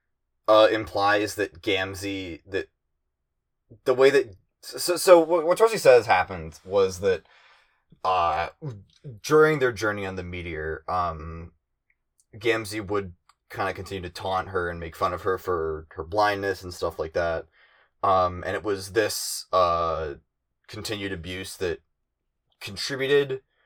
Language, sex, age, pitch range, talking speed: English, male, 20-39, 85-110 Hz, 135 wpm